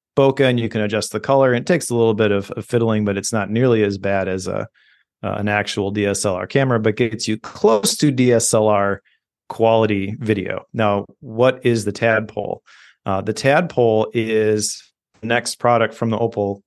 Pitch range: 105-125 Hz